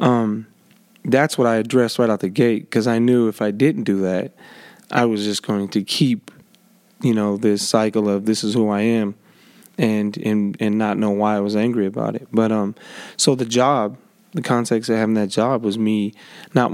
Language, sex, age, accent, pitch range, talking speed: English, male, 20-39, American, 105-125 Hz, 210 wpm